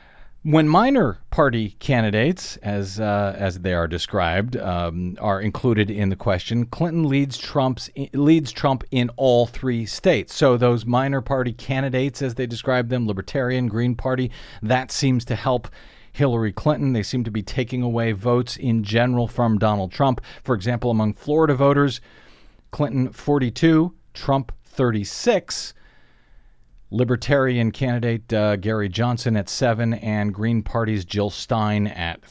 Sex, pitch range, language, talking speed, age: male, 100-125 Hz, English, 145 wpm, 40-59